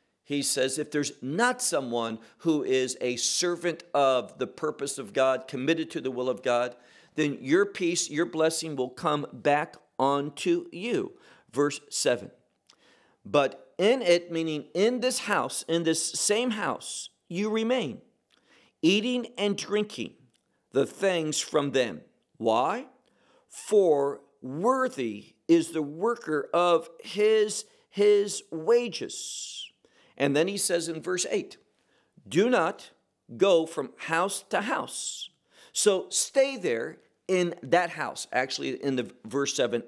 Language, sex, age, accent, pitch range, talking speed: English, male, 50-69, American, 145-225 Hz, 130 wpm